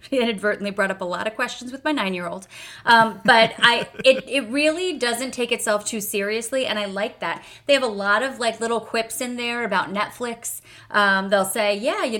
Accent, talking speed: American, 205 wpm